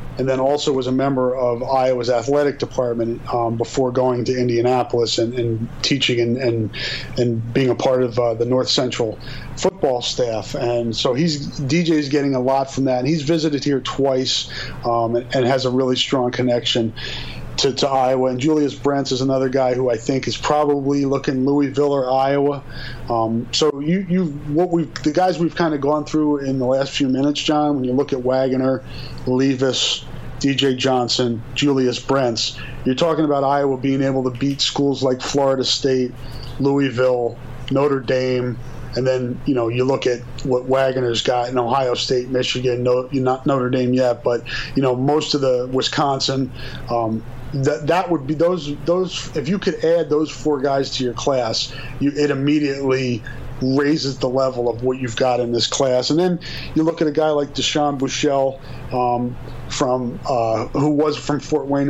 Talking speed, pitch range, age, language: 185 wpm, 125-140 Hz, 30-49, English